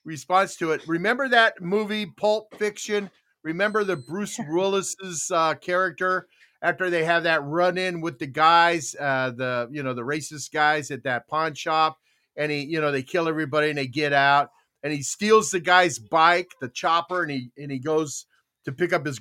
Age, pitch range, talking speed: 50-69, 150-215 Hz, 190 wpm